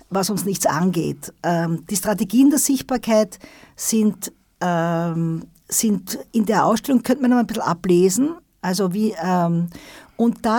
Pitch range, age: 170-240 Hz, 50-69